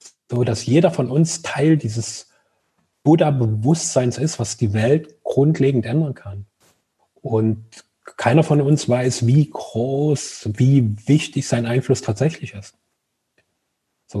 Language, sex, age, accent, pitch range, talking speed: German, male, 30-49, German, 110-140 Hz, 125 wpm